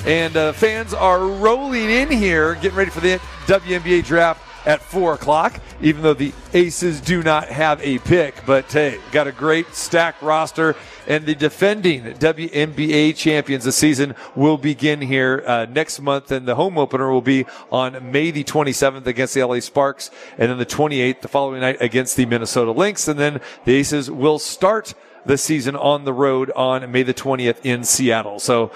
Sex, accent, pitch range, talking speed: male, American, 130-160 Hz, 185 wpm